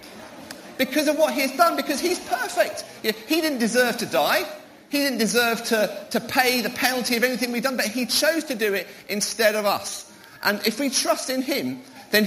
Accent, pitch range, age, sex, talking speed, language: British, 215-275 Hz, 40-59, male, 200 wpm, English